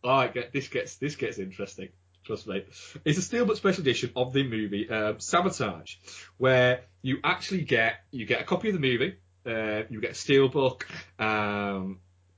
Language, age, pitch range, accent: English, 30-49, 100-145 Hz, British